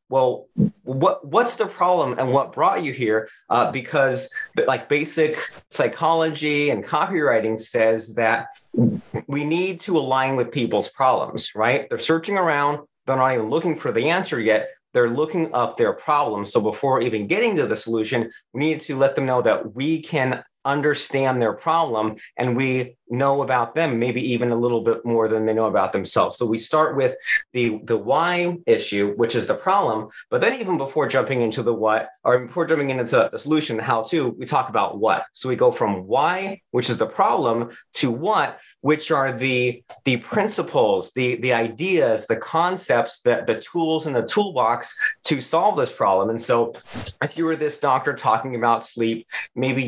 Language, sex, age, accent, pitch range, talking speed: English, male, 30-49, American, 115-155 Hz, 180 wpm